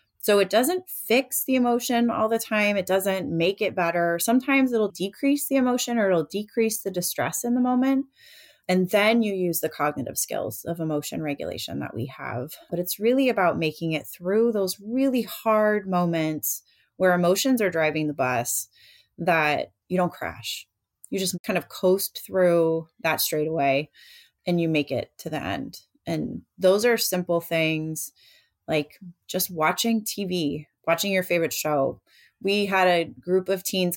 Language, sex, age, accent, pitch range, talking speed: English, female, 30-49, American, 160-215 Hz, 170 wpm